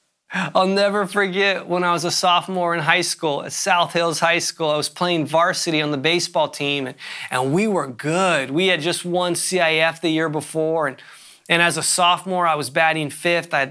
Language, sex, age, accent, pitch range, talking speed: English, male, 30-49, American, 170-225 Hz, 210 wpm